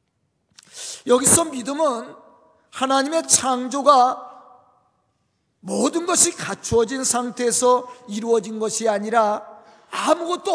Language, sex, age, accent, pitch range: Korean, male, 40-59, native, 230-310 Hz